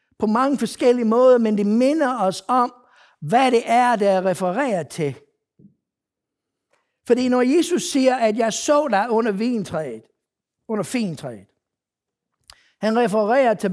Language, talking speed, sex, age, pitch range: Danish, 130 wpm, male, 60-79, 190-245 Hz